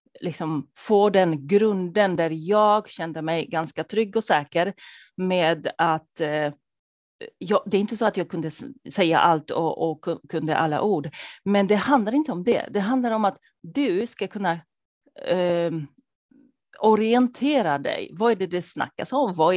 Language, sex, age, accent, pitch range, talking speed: Swedish, female, 30-49, native, 170-220 Hz, 150 wpm